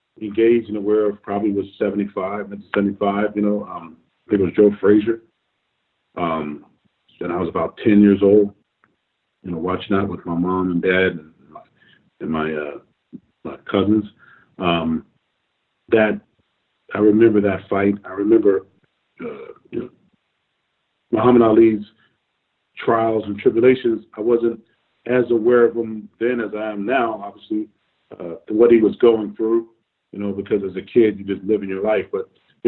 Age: 40-59